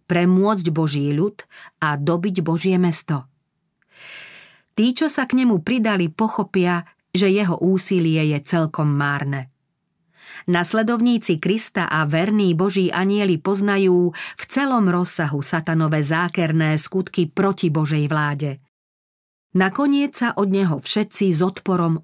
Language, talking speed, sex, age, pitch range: Slovak, 115 wpm, female, 40-59, 160-200 Hz